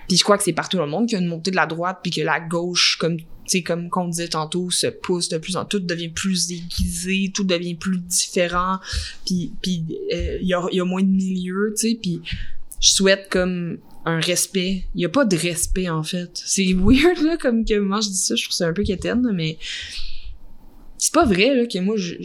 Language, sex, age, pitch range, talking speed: French, female, 20-39, 165-195 Hz, 235 wpm